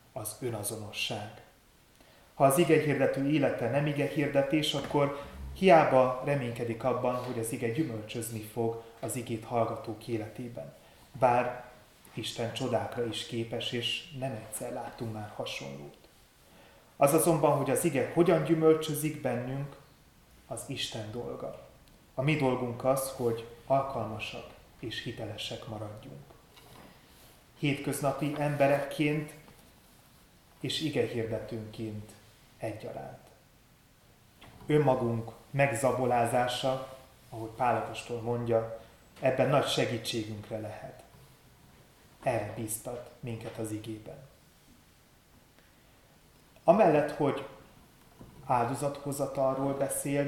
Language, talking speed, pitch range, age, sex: Hungarian, 95 wpm, 115-140 Hz, 30-49, male